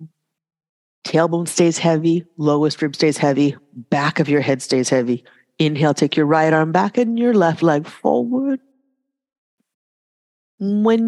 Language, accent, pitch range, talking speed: English, American, 155-205 Hz, 135 wpm